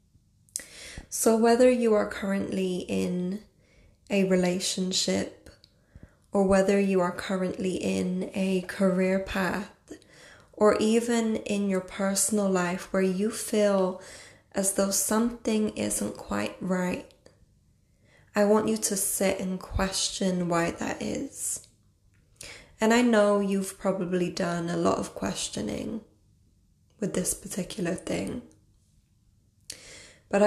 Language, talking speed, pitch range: English, 110 wpm, 160-205 Hz